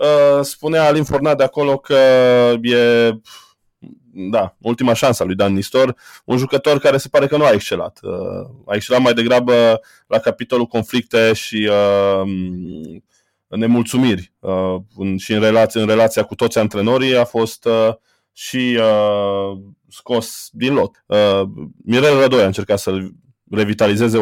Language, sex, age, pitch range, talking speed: Romanian, male, 20-39, 100-130 Hz, 145 wpm